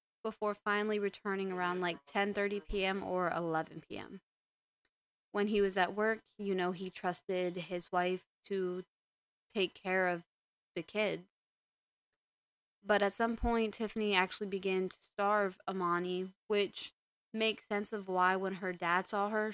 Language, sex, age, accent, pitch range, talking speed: English, female, 20-39, American, 185-210 Hz, 145 wpm